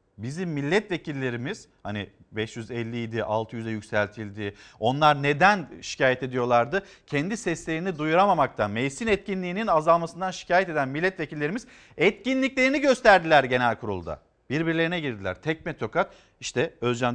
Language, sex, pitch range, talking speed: Turkish, male, 140-205 Hz, 100 wpm